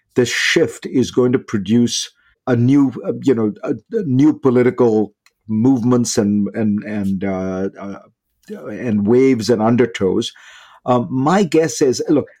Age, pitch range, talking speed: 50-69, 105-130 Hz, 145 wpm